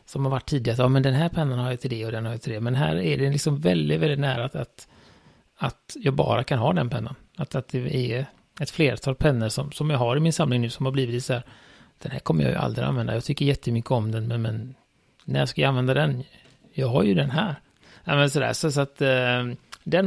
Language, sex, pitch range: Swedish, male, 125-150 Hz